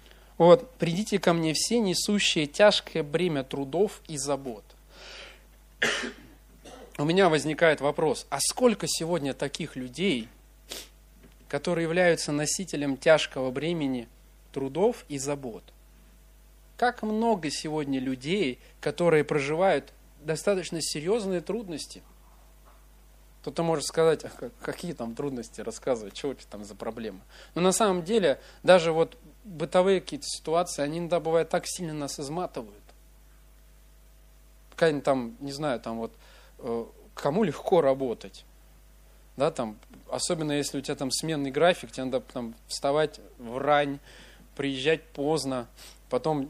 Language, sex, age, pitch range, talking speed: Russian, male, 30-49, 140-180 Hz, 120 wpm